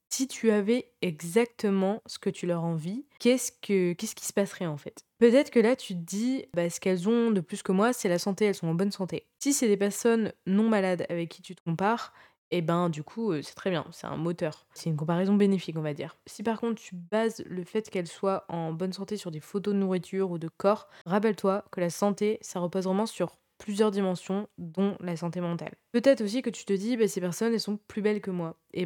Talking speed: 245 wpm